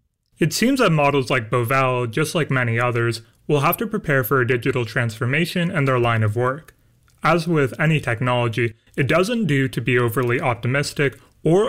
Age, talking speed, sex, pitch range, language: 30-49, 180 wpm, male, 120-155 Hz, English